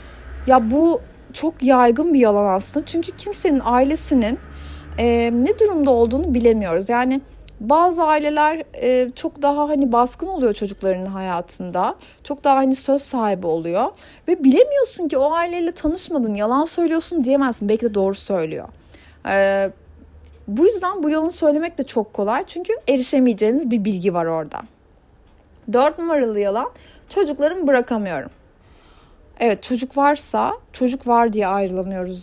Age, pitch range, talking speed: 30-49, 205-295 Hz, 135 wpm